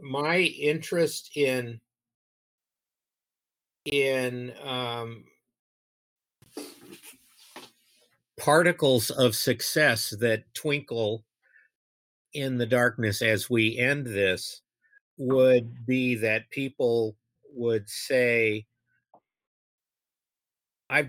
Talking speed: 70 wpm